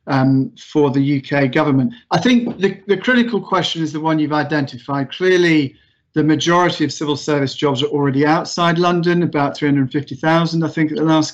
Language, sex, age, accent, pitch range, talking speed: English, male, 40-59, British, 145-175 Hz, 180 wpm